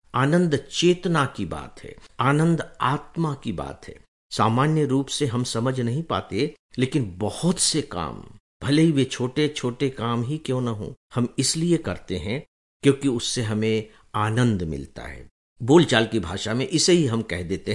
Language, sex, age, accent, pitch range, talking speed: English, male, 60-79, Indian, 110-150 Hz, 170 wpm